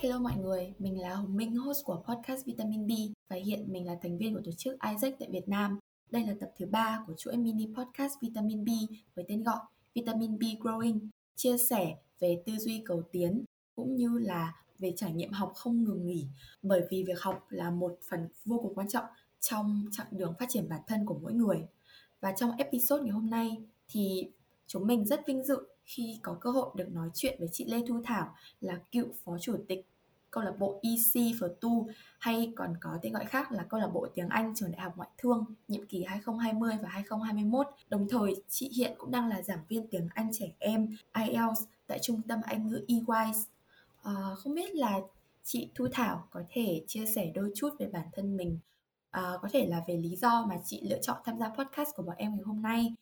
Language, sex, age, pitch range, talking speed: Vietnamese, female, 20-39, 185-235 Hz, 220 wpm